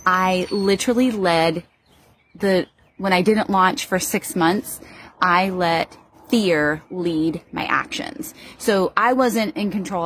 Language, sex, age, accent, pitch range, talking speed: English, female, 30-49, American, 170-215 Hz, 130 wpm